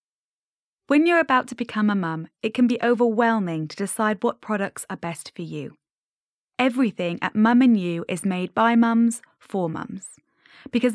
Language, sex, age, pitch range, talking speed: English, female, 20-39, 185-245 Hz, 165 wpm